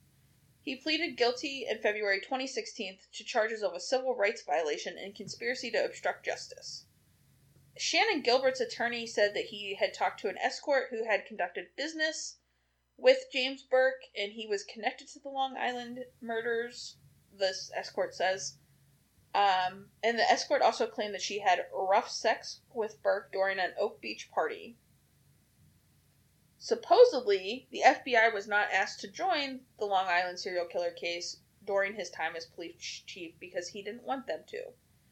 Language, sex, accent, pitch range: English, female, American, 190-270 Hz